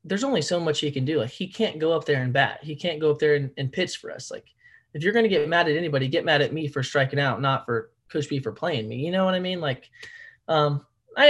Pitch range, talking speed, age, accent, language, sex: 120-150 Hz, 295 wpm, 20-39, American, English, male